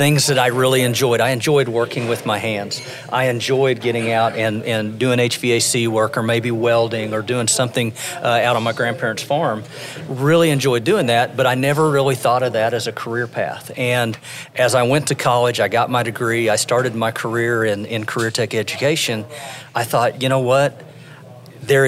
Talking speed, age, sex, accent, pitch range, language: 195 wpm, 40-59, male, American, 115-135 Hz, English